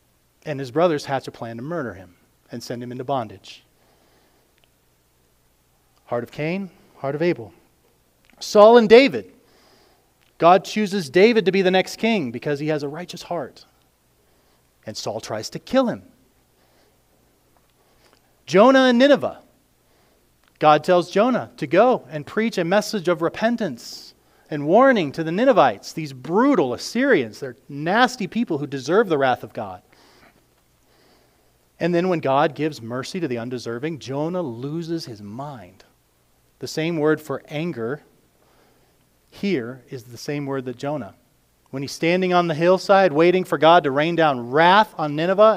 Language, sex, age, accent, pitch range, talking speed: English, male, 40-59, American, 135-190 Hz, 150 wpm